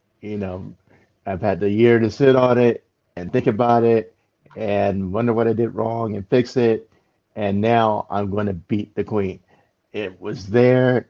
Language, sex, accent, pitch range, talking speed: English, male, American, 95-110 Hz, 185 wpm